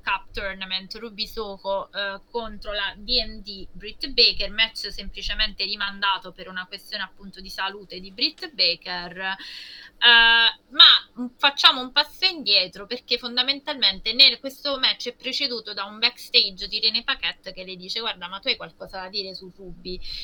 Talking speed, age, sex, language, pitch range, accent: 155 wpm, 20-39, female, Italian, 185-230 Hz, native